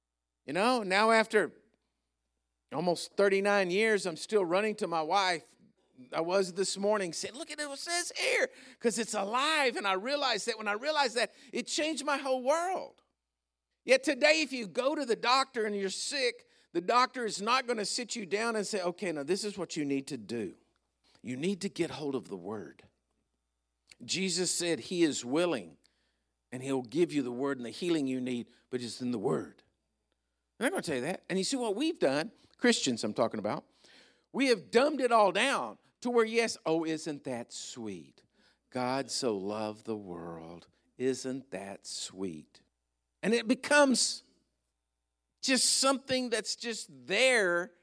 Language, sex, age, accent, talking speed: English, male, 50-69, American, 180 wpm